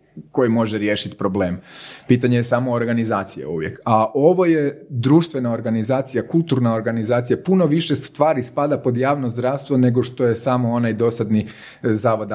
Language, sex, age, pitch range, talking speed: Croatian, male, 30-49, 110-130 Hz, 145 wpm